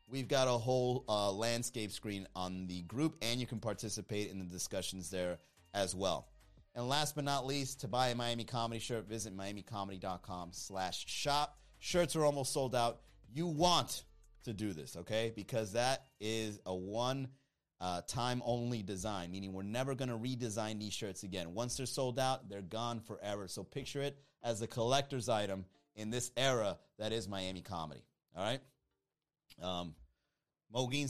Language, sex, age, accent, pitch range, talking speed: English, male, 30-49, American, 100-140 Hz, 170 wpm